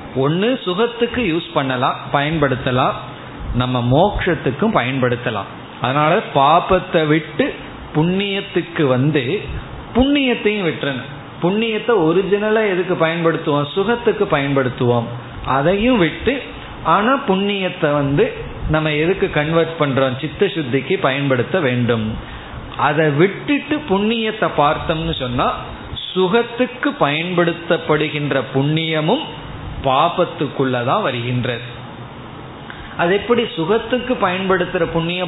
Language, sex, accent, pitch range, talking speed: Tamil, male, native, 140-190 Hz, 75 wpm